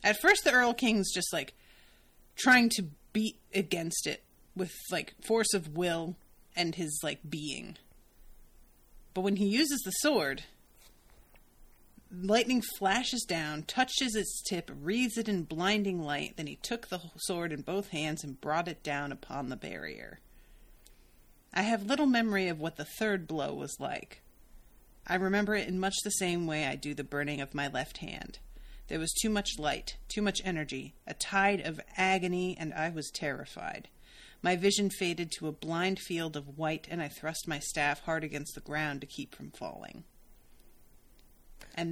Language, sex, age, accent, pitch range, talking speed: English, female, 30-49, American, 155-200 Hz, 170 wpm